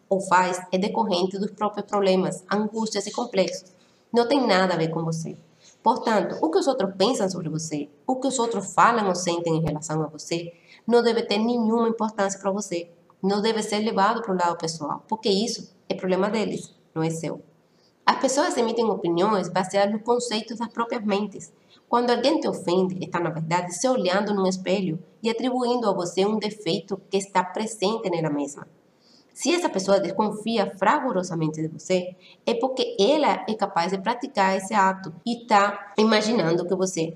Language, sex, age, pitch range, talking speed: Portuguese, female, 30-49, 175-225 Hz, 180 wpm